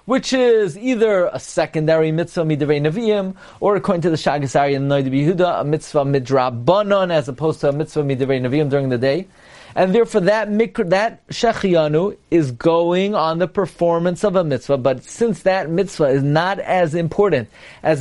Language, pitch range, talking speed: English, 160-210 Hz, 165 wpm